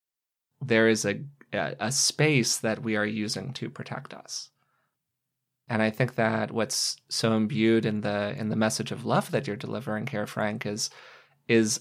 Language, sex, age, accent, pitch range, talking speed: English, male, 20-39, American, 110-125 Hz, 170 wpm